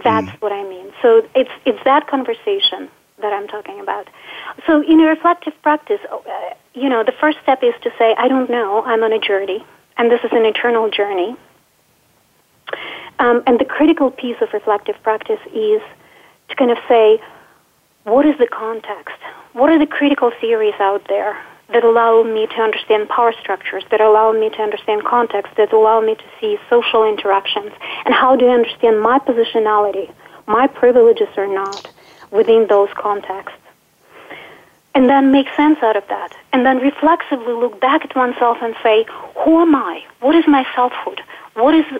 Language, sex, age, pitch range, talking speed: English, female, 40-59, 220-280 Hz, 175 wpm